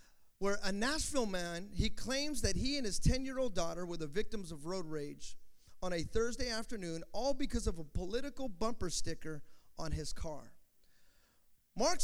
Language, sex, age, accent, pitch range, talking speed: English, male, 30-49, American, 185-270 Hz, 165 wpm